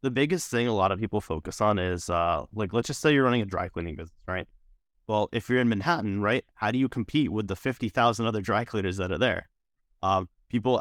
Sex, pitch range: male, 95-120 Hz